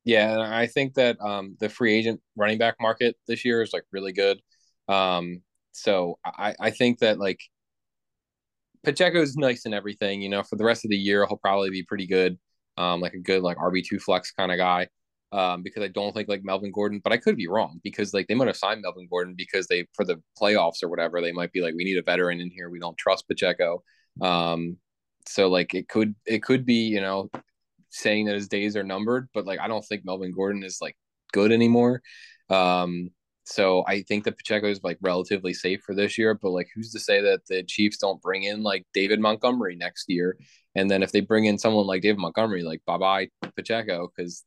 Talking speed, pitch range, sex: 225 wpm, 90-110 Hz, male